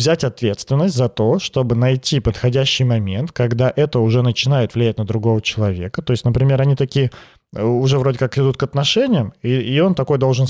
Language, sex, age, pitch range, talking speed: Russian, male, 30-49, 110-140 Hz, 185 wpm